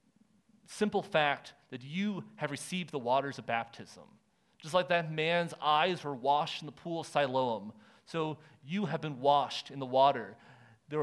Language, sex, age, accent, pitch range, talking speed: English, male, 40-59, American, 135-170 Hz, 170 wpm